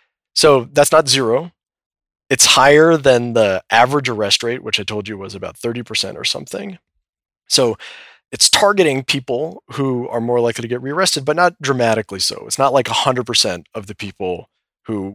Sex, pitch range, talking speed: male, 100-140 Hz, 170 wpm